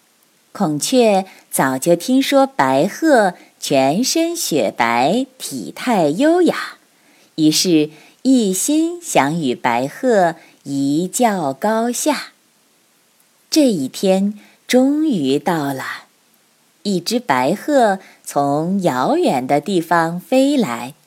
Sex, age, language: female, 20-39, Chinese